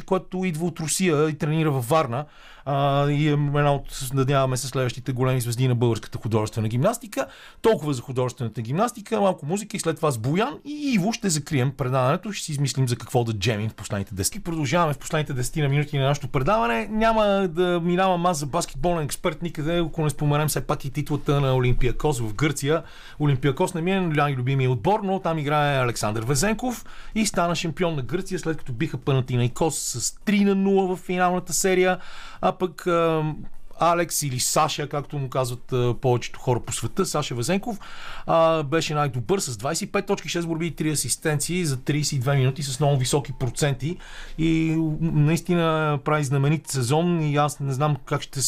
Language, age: Bulgarian, 30-49